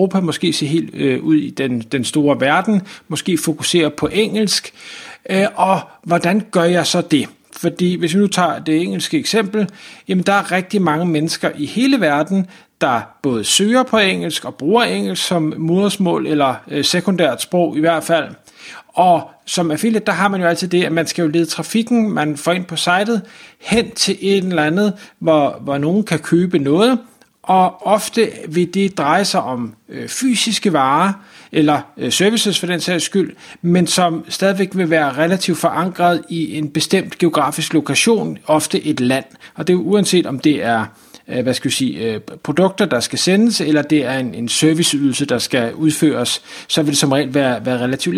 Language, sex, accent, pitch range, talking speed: Danish, male, native, 150-195 Hz, 185 wpm